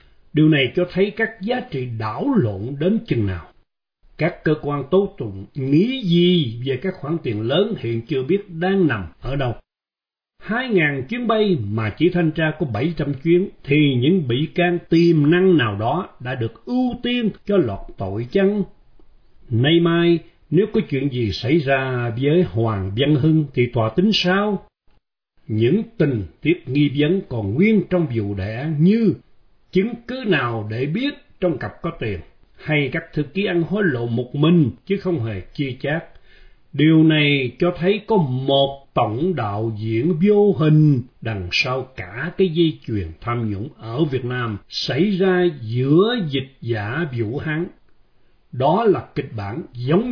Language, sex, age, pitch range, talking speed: Vietnamese, male, 60-79, 120-180 Hz, 170 wpm